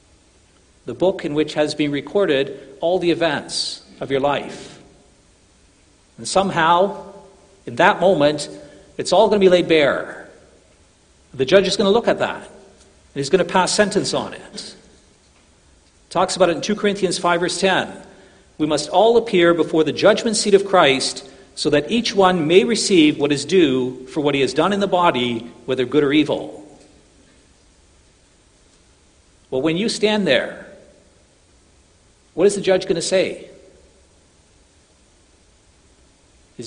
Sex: male